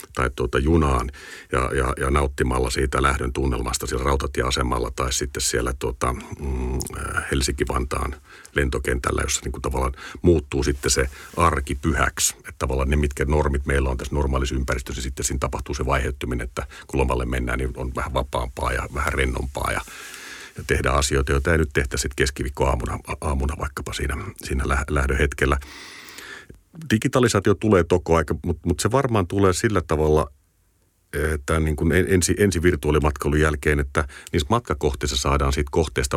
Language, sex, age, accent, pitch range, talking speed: Finnish, male, 50-69, native, 70-85 Hz, 150 wpm